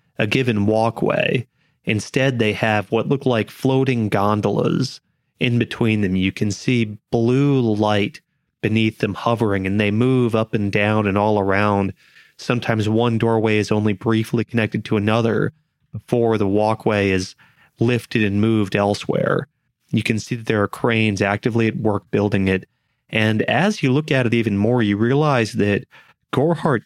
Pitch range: 105-125 Hz